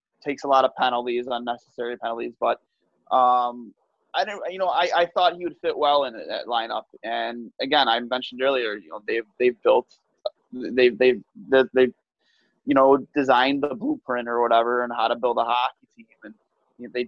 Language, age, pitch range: English, 20-39, 115-130 Hz